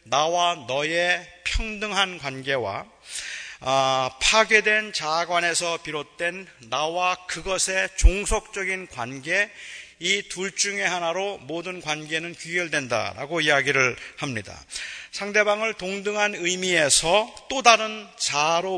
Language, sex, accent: Korean, male, native